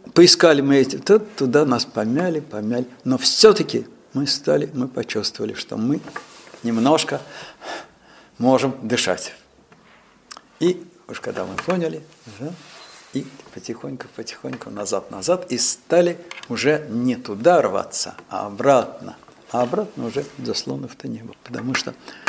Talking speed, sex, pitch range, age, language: 115 wpm, male, 125-170 Hz, 60-79, Russian